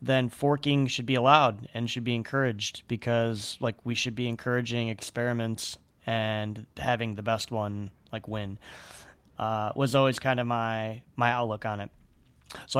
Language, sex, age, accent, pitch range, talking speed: English, male, 20-39, American, 110-130 Hz, 160 wpm